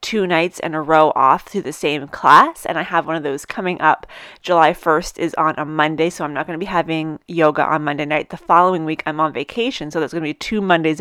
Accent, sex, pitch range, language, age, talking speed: American, female, 170-220 Hz, English, 30-49, 260 wpm